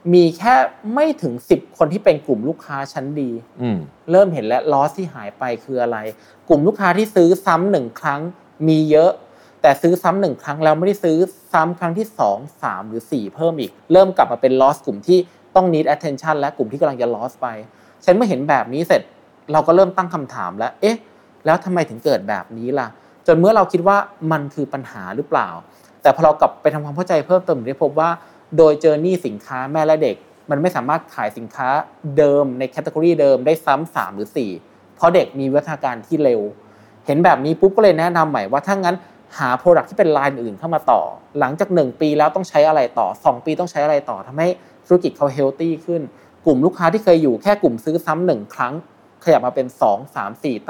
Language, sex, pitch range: Thai, male, 135-180 Hz